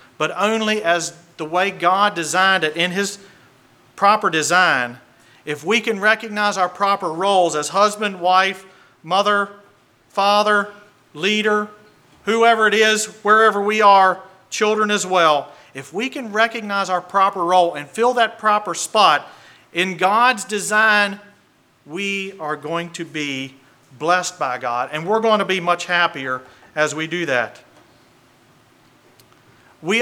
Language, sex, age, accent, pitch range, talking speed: English, male, 40-59, American, 155-205 Hz, 140 wpm